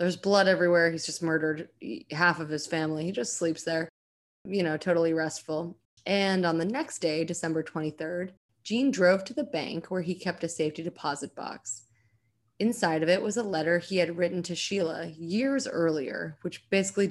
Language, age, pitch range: English, 20-39, 155-185 Hz